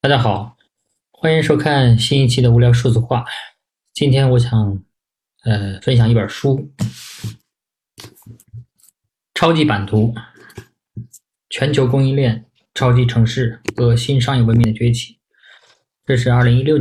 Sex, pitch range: male, 115-125 Hz